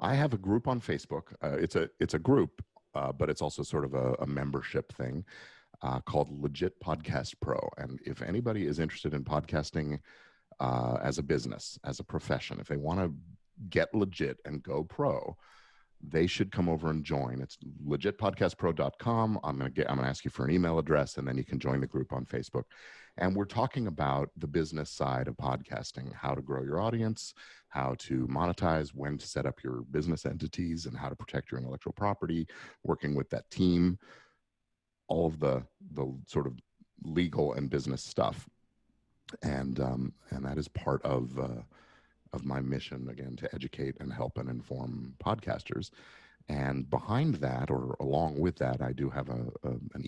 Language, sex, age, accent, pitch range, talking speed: English, male, 40-59, American, 65-80 Hz, 185 wpm